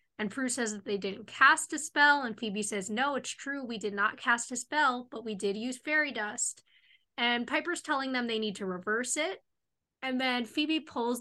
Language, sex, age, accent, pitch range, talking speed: English, female, 20-39, American, 210-270 Hz, 215 wpm